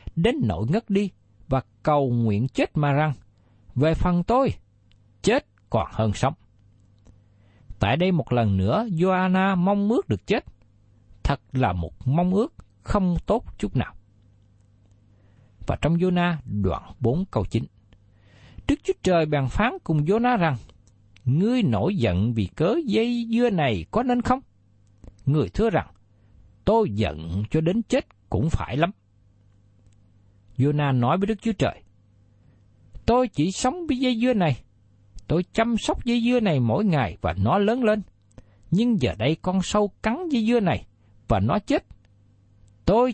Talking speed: 155 wpm